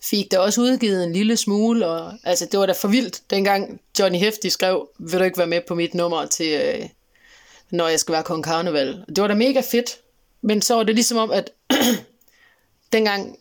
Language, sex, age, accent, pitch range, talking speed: Danish, female, 30-49, native, 180-220 Hz, 210 wpm